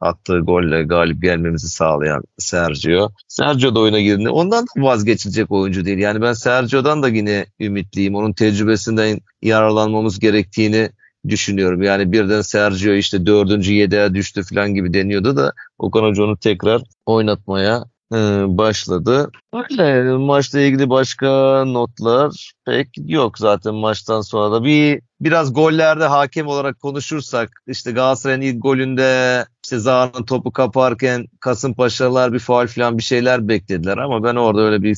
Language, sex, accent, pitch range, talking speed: Turkish, male, native, 100-125 Hz, 135 wpm